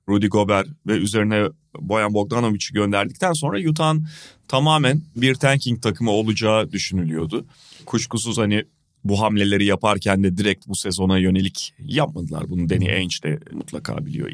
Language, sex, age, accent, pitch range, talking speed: Turkish, male, 30-49, native, 100-155 Hz, 135 wpm